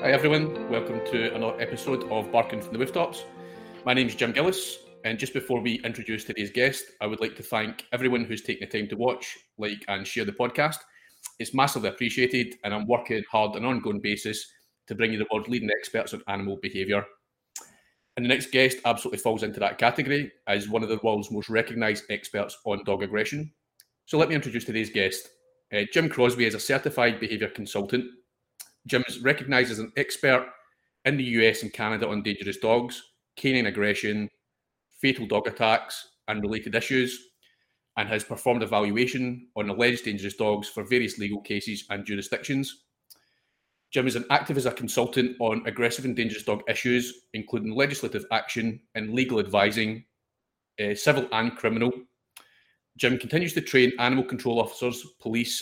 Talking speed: 175 wpm